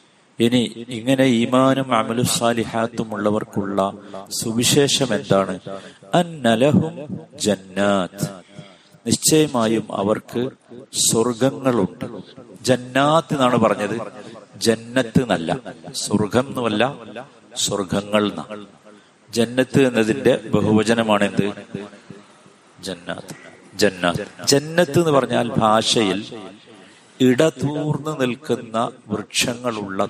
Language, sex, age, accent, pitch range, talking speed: Malayalam, male, 50-69, native, 105-130 Hz, 55 wpm